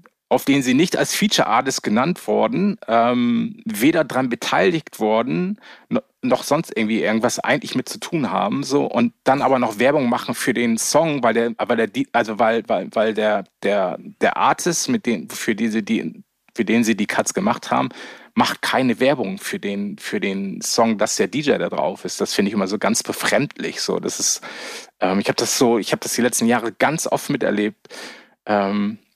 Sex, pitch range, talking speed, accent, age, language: male, 115-155 Hz, 200 wpm, German, 30-49, German